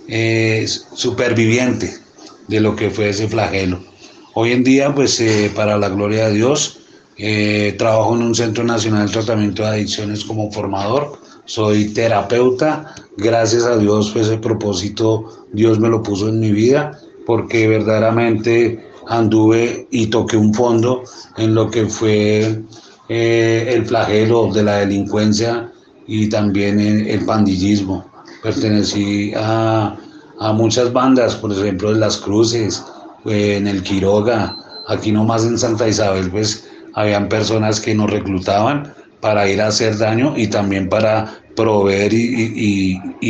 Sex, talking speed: male, 140 wpm